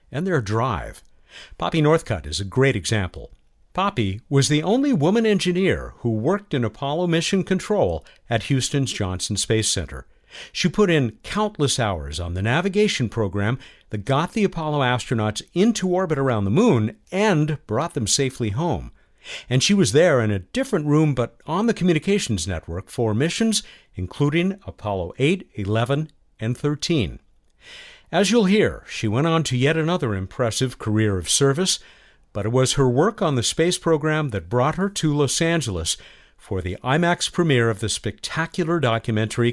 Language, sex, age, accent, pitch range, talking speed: English, male, 50-69, American, 105-170 Hz, 160 wpm